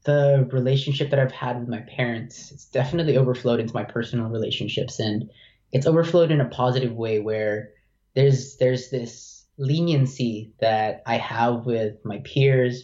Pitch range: 110-135 Hz